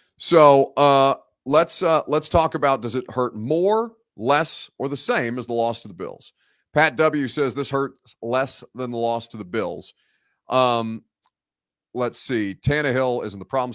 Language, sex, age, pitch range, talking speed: English, male, 30-49, 110-145 Hz, 175 wpm